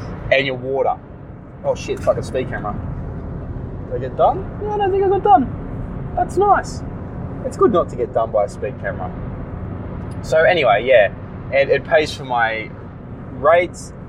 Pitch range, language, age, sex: 115-135 Hz, English, 20-39, male